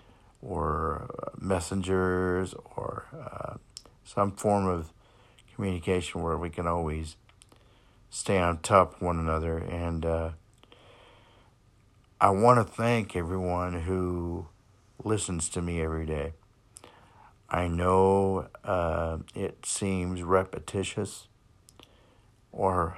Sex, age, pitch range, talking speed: male, 50-69, 90-110 Hz, 100 wpm